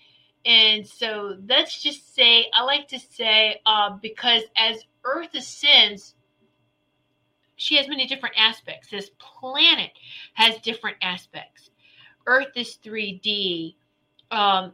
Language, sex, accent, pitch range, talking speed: English, female, American, 185-230 Hz, 115 wpm